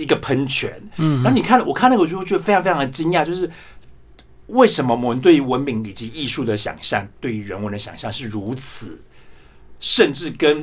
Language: Chinese